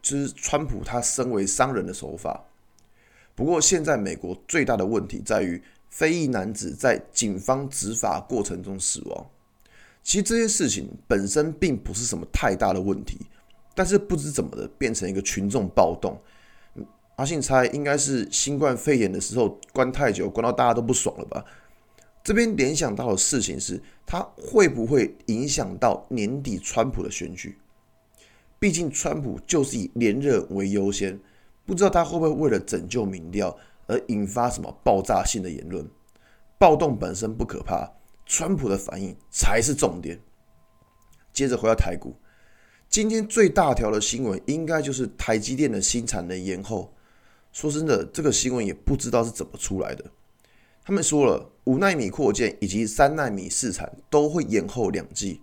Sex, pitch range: male, 100-150 Hz